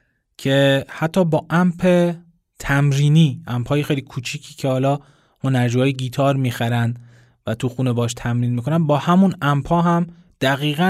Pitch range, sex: 125-165 Hz, male